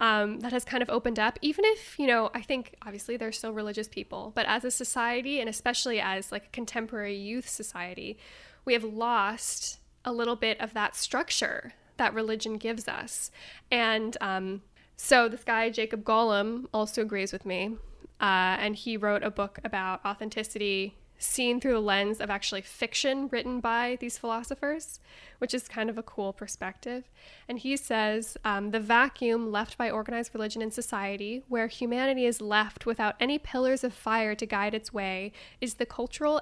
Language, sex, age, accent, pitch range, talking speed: English, female, 10-29, American, 210-250 Hz, 180 wpm